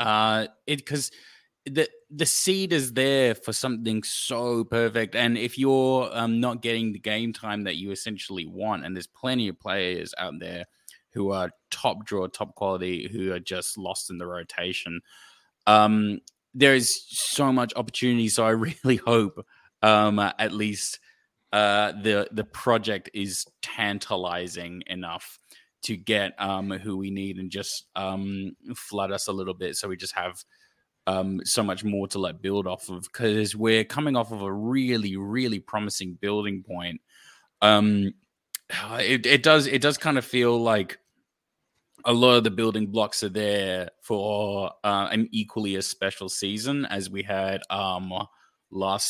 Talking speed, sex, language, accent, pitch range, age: 165 wpm, male, English, Australian, 95-120 Hz, 20-39